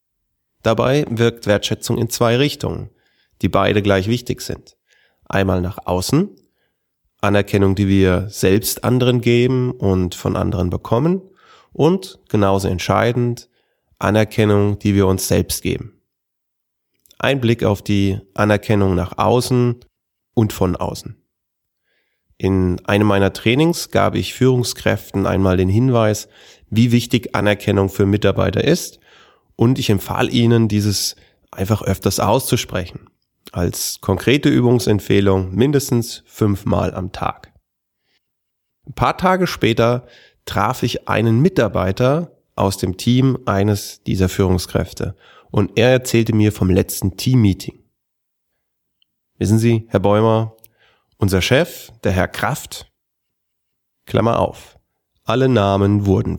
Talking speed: 115 wpm